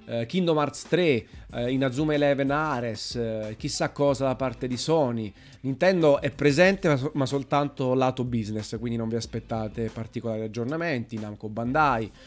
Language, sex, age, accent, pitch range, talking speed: Italian, male, 30-49, native, 115-150 Hz, 130 wpm